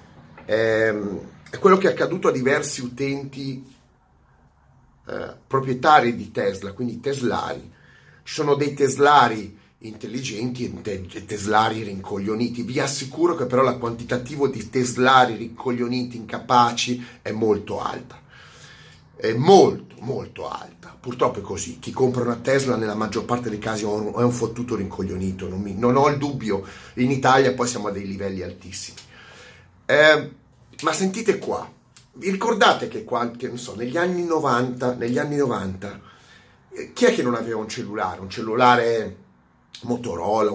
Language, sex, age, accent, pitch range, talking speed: Italian, male, 30-49, native, 110-125 Hz, 140 wpm